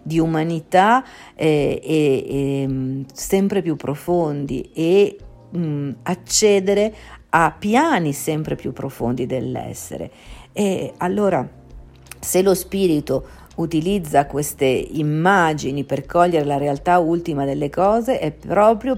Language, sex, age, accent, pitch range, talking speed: Italian, female, 50-69, native, 150-195 Hz, 110 wpm